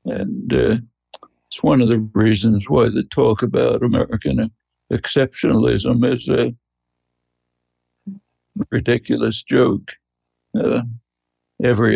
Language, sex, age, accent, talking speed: English, male, 60-79, American, 95 wpm